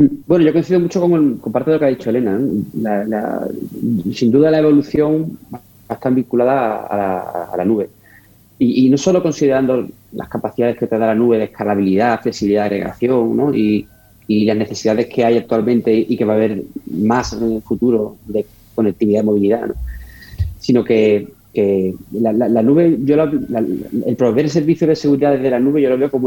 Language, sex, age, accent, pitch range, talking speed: Spanish, male, 30-49, Spanish, 105-130 Hz, 205 wpm